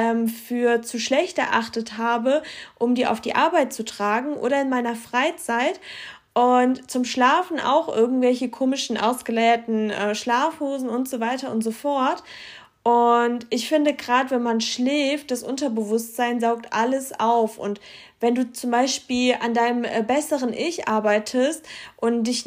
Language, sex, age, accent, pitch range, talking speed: German, female, 20-39, German, 235-280 Hz, 145 wpm